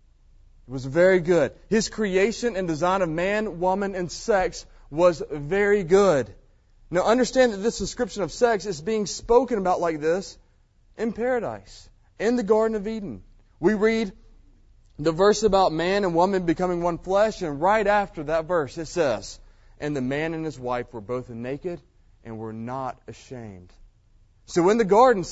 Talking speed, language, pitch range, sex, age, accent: 170 wpm, English, 120-195 Hz, male, 30-49, American